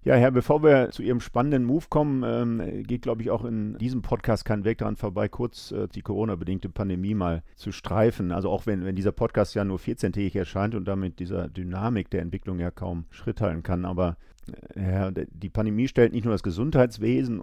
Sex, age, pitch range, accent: male, 50-69, 95-115 Hz, German